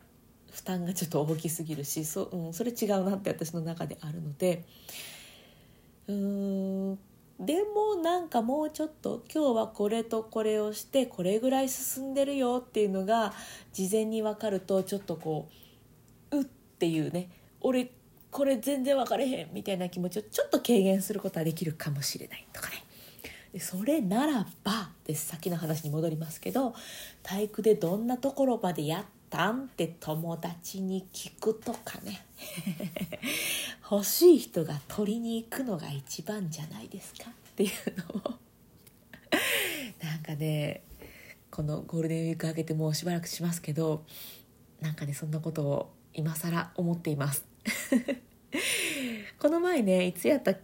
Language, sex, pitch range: Japanese, female, 165-250 Hz